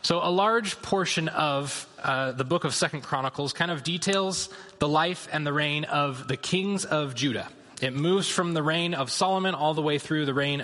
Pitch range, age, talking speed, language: 135-165 Hz, 20-39, 210 wpm, English